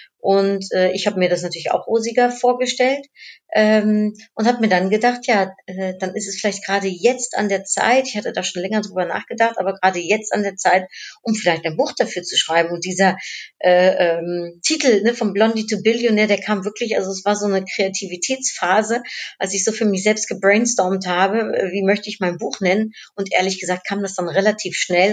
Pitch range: 185-215 Hz